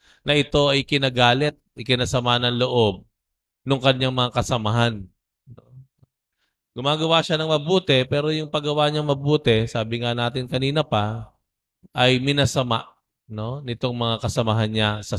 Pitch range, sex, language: 110-130 Hz, male, Filipino